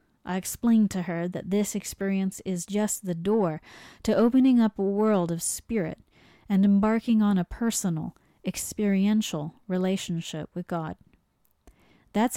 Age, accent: 30-49, American